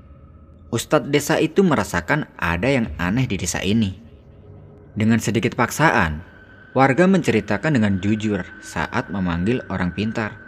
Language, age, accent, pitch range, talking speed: Indonesian, 20-39, native, 90-110 Hz, 120 wpm